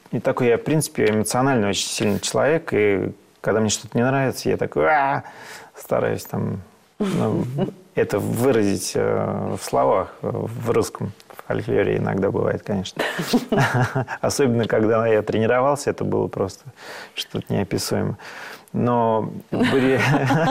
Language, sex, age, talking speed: Russian, male, 30-49, 115 wpm